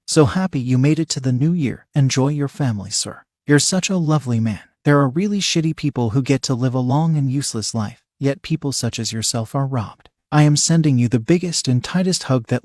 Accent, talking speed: American, 230 wpm